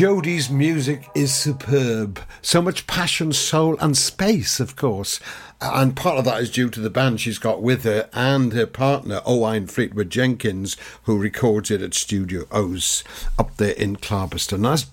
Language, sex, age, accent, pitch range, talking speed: English, male, 60-79, British, 110-145 Hz, 170 wpm